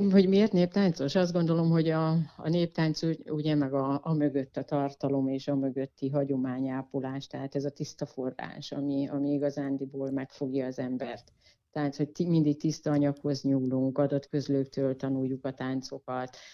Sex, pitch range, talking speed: female, 135-150 Hz, 155 wpm